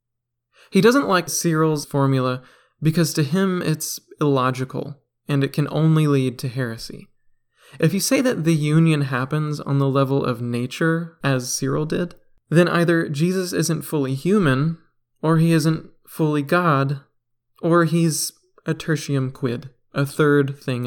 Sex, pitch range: male, 130-165 Hz